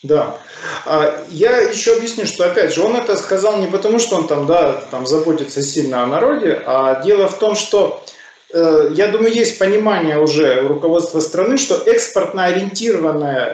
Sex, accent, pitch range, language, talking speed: male, native, 160-245 Hz, Russian, 165 wpm